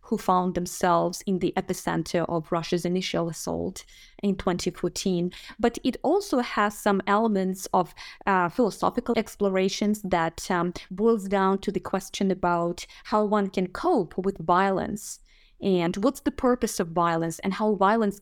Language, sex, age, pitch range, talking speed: English, female, 20-39, 180-220 Hz, 150 wpm